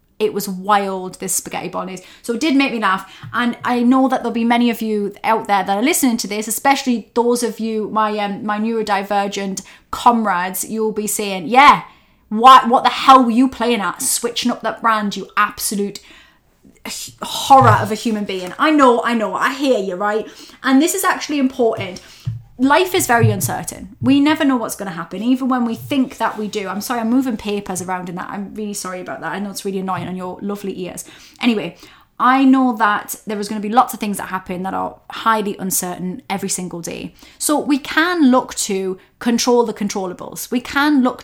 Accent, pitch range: British, 200-255 Hz